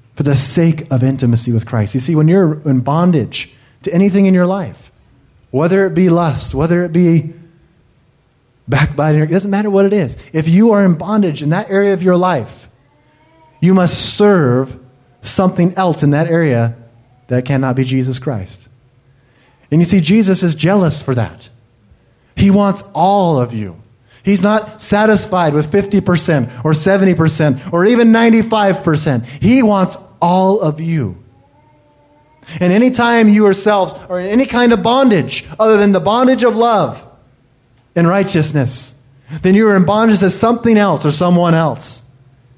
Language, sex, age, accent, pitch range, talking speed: English, male, 30-49, American, 125-190 Hz, 165 wpm